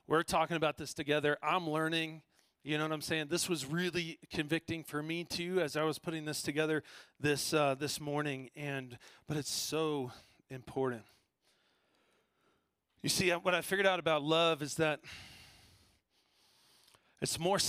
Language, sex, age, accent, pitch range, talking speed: English, male, 40-59, American, 150-185 Hz, 155 wpm